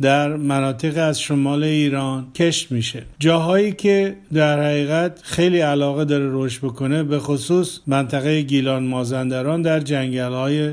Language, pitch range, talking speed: Persian, 135-160 Hz, 130 wpm